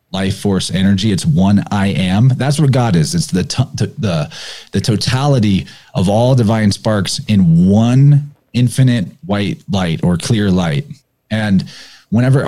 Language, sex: English, male